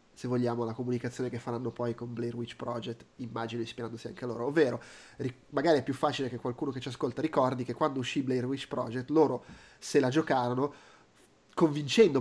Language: Italian